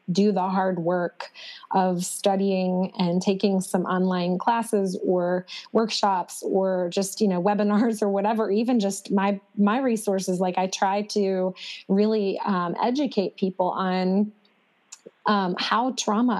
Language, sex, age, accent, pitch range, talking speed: English, female, 20-39, American, 185-210 Hz, 135 wpm